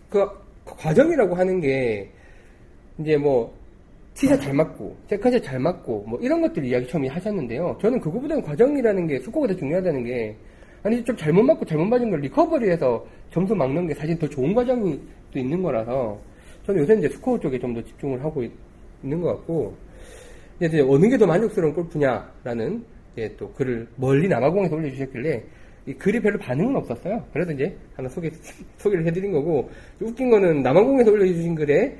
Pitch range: 135-215 Hz